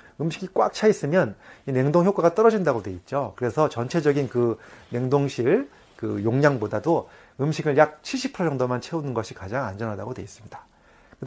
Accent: native